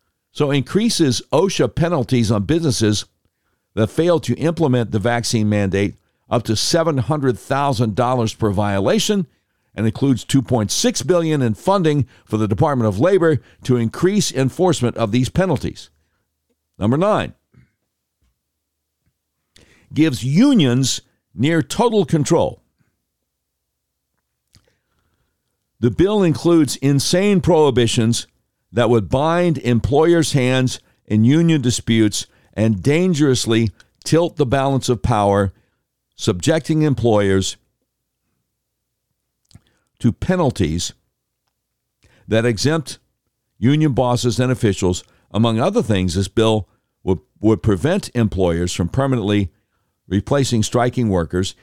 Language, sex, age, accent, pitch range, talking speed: English, male, 60-79, American, 100-140 Hz, 100 wpm